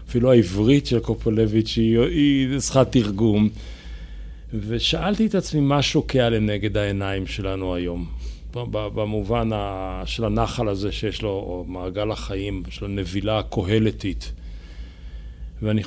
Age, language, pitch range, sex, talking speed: 40-59, Hebrew, 95-120 Hz, male, 110 wpm